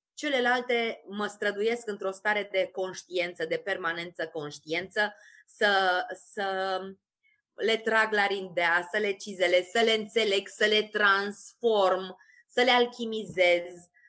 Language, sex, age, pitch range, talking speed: Romanian, female, 20-39, 180-250 Hz, 120 wpm